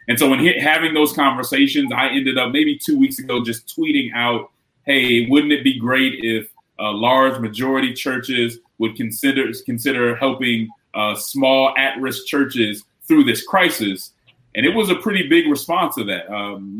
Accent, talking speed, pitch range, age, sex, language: American, 170 wpm, 115-150 Hz, 30-49, male, English